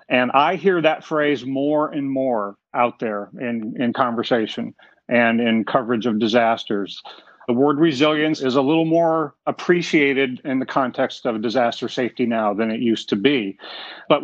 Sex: male